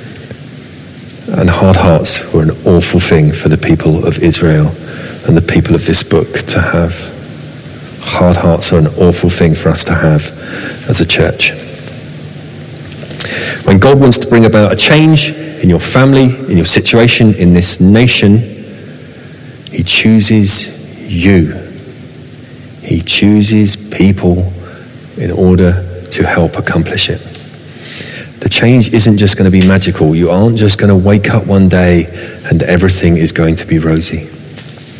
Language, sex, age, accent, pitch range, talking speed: English, male, 40-59, British, 85-110 Hz, 145 wpm